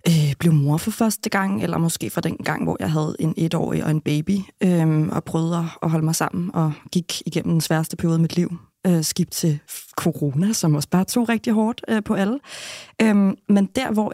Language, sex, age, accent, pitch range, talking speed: Danish, female, 20-39, native, 160-200 Hz, 200 wpm